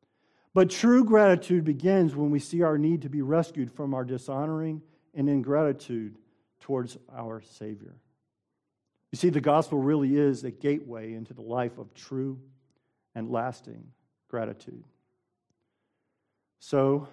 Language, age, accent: English, 50-69, American